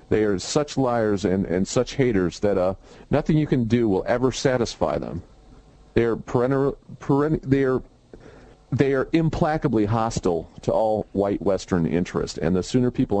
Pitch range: 95-120 Hz